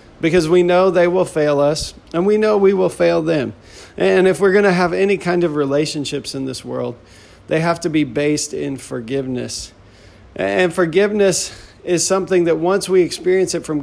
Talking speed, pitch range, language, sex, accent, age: 190 wpm, 135-170 Hz, English, male, American, 40-59